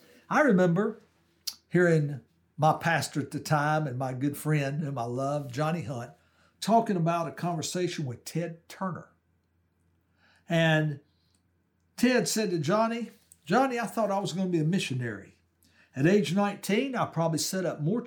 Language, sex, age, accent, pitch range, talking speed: English, male, 60-79, American, 130-195 Hz, 155 wpm